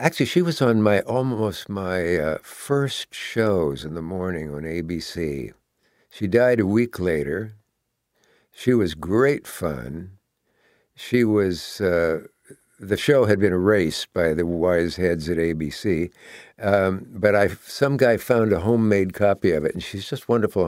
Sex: male